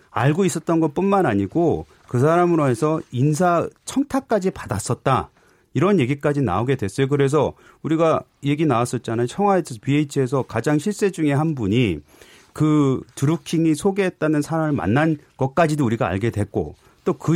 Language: Korean